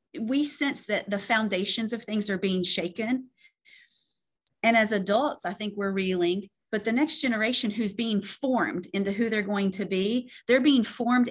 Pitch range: 185-225 Hz